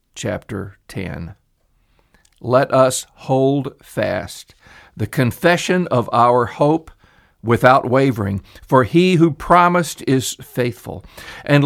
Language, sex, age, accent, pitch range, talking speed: English, male, 50-69, American, 105-135 Hz, 105 wpm